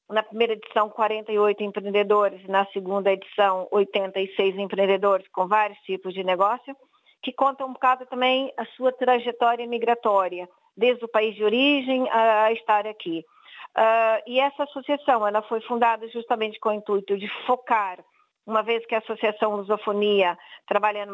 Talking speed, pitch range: 145 wpm, 205-235 Hz